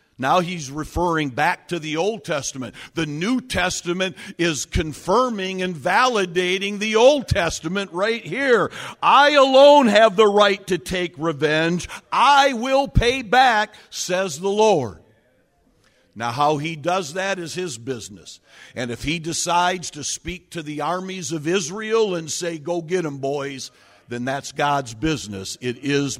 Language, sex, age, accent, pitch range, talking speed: English, male, 50-69, American, 135-185 Hz, 150 wpm